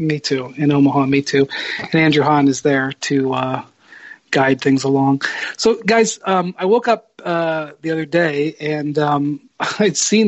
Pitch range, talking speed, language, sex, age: 145-195 Hz, 175 wpm, English, male, 40-59